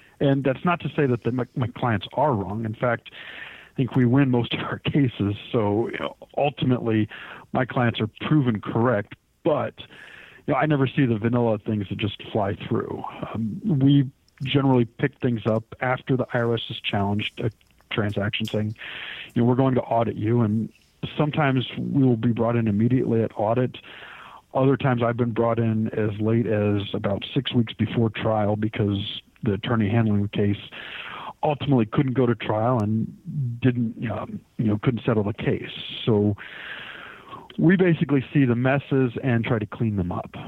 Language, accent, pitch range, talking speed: English, American, 110-135 Hz, 180 wpm